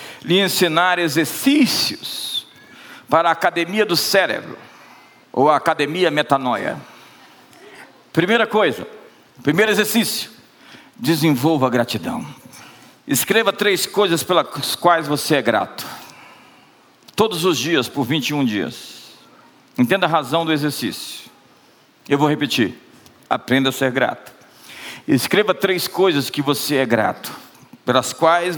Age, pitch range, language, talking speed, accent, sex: 50-69, 135-170 Hz, Portuguese, 115 wpm, Brazilian, male